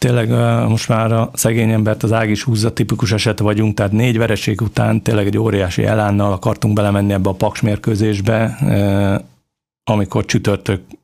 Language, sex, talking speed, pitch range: Hungarian, male, 145 wpm, 100-115 Hz